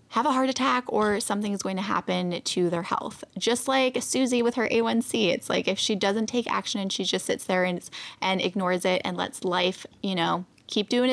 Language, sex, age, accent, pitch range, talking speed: English, female, 10-29, American, 185-225 Hz, 220 wpm